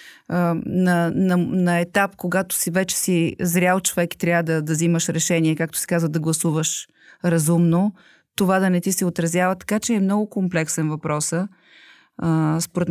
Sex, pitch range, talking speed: female, 160-195 Hz, 160 wpm